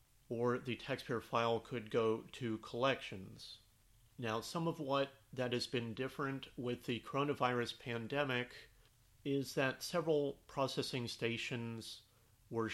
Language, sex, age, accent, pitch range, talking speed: English, male, 40-59, American, 115-130 Hz, 120 wpm